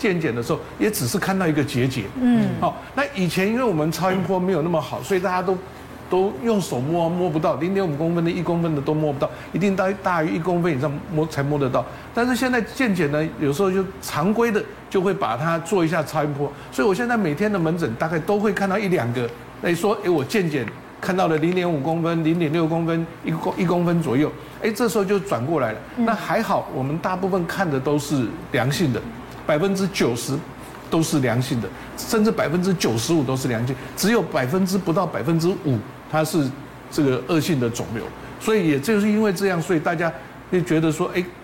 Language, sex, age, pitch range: Chinese, male, 60-79, 145-195 Hz